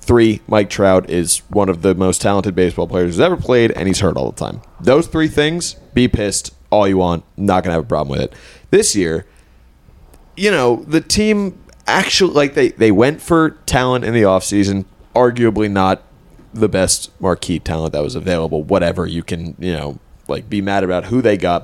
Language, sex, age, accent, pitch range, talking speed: English, male, 30-49, American, 90-120 Hz, 200 wpm